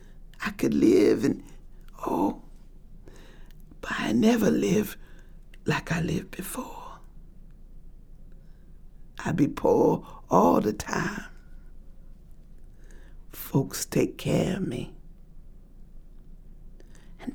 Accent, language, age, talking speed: American, English, 60-79, 85 wpm